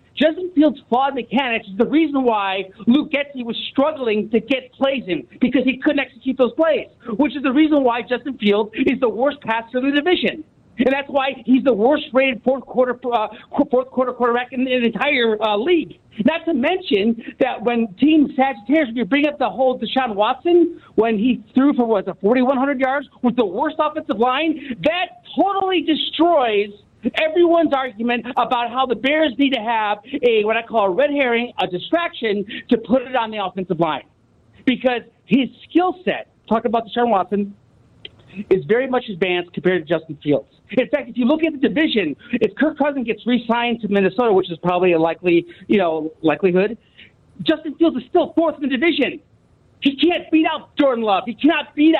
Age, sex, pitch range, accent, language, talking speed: 50-69, male, 220-285 Hz, American, English, 195 wpm